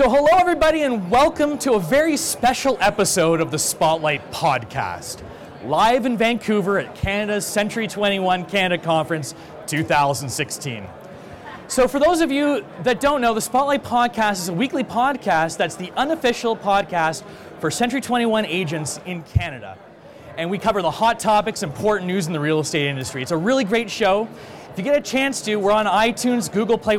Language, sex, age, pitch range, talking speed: English, male, 30-49, 180-245 Hz, 175 wpm